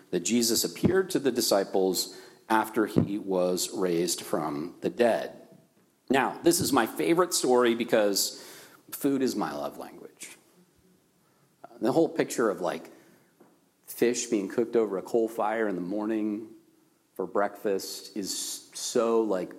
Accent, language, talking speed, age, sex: American, English, 140 wpm, 40-59, male